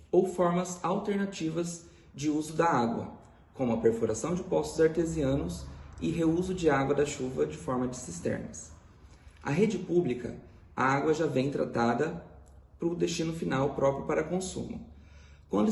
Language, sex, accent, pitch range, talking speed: Portuguese, male, Brazilian, 125-165 Hz, 150 wpm